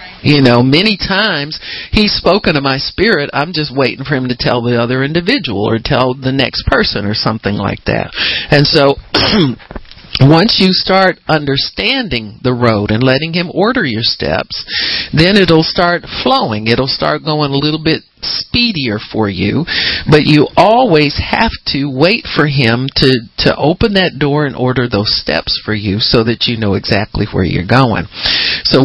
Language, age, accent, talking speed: English, 50-69, American, 180 wpm